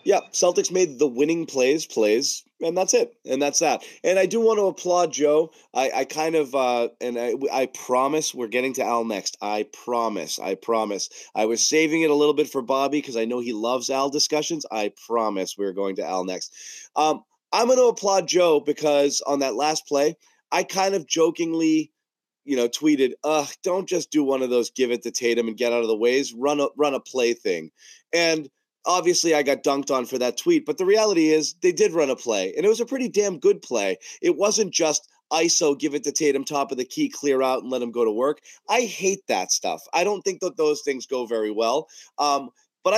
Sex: male